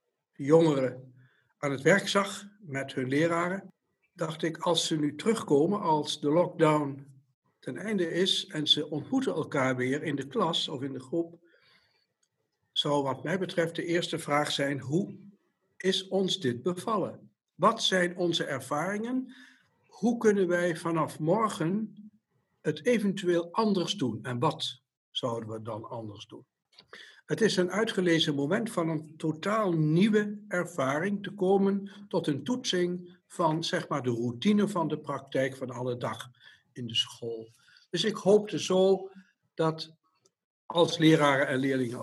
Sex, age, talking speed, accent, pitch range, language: male, 60-79, 145 wpm, Dutch, 135-190 Hz, Dutch